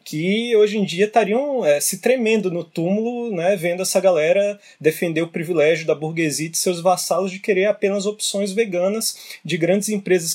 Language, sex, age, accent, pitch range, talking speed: Portuguese, male, 20-39, Brazilian, 160-215 Hz, 180 wpm